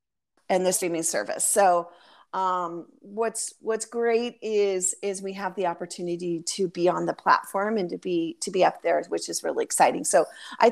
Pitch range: 195-255 Hz